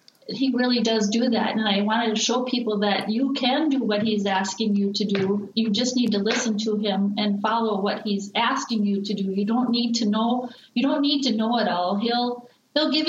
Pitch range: 210-245 Hz